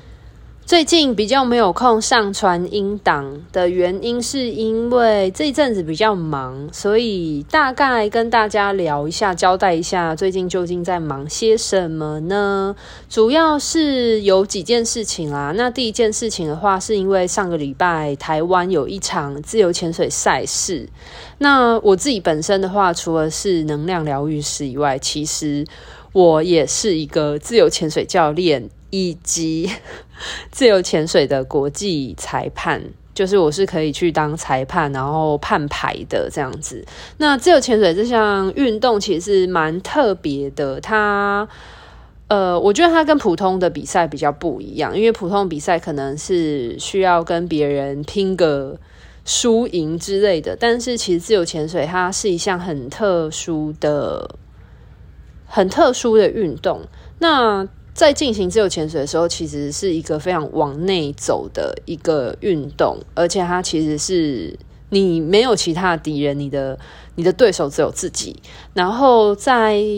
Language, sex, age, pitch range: Chinese, female, 20-39, 155-215 Hz